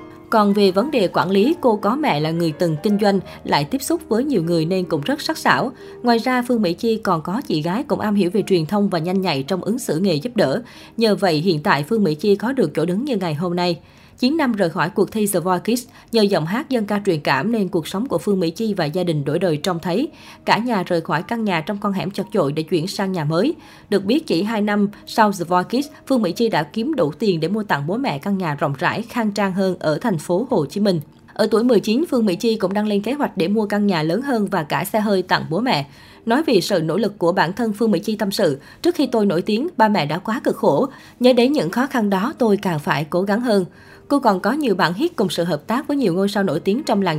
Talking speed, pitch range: 280 wpm, 180-230 Hz